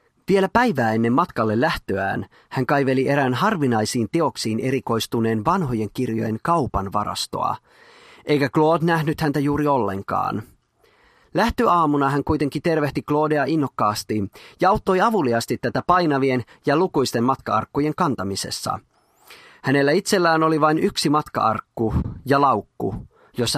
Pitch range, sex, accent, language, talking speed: 115-165 Hz, male, native, Finnish, 115 wpm